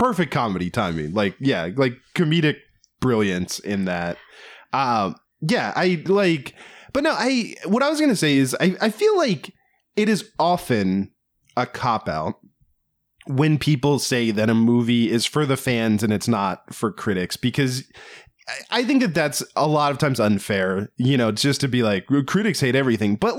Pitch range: 105-150 Hz